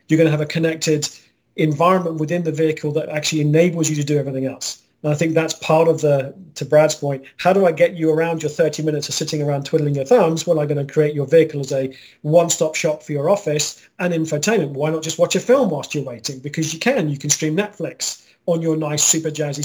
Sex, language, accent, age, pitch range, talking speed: male, English, British, 40-59, 145-170 Hz, 245 wpm